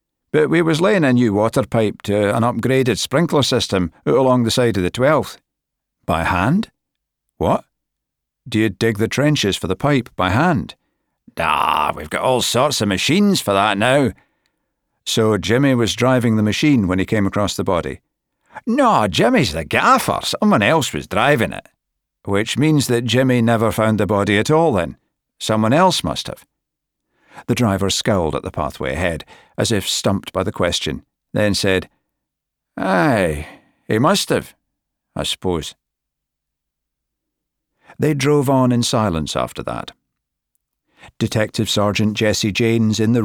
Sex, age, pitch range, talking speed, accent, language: male, 60-79, 100-125 Hz, 155 wpm, British, English